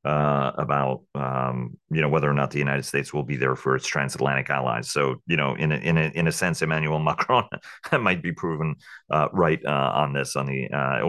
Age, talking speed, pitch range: 40-59, 220 wpm, 70-85 Hz